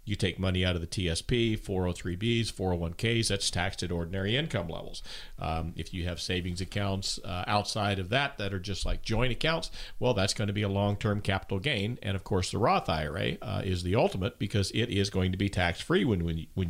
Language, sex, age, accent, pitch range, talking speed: English, male, 50-69, American, 95-120 Hz, 210 wpm